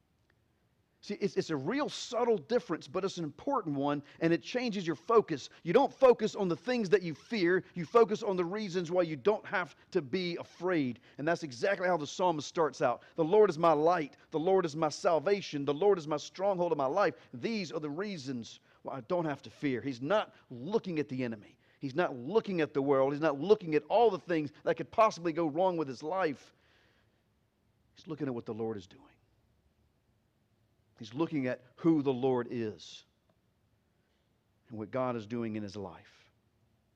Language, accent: English, American